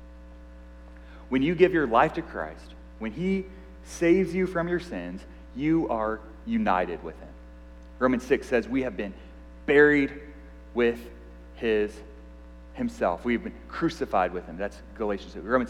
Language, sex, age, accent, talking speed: English, male, 30-49, American, 145 wpm